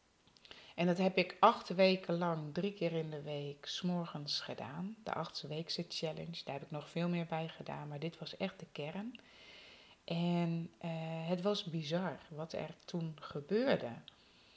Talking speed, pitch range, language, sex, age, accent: 170 wpm, 150-180 Hz, German, female, 30-49, Dutch